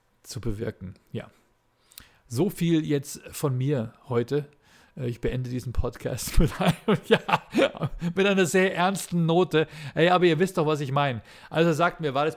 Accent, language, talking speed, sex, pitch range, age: German, German, 165 wpm, male, 130-160 Hz, 50-69